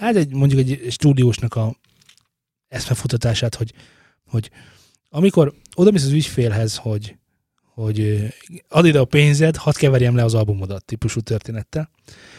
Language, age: Hungarian, 20-39